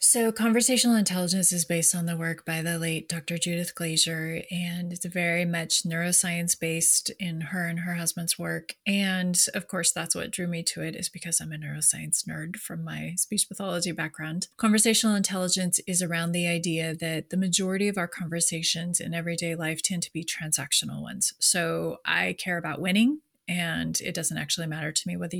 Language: English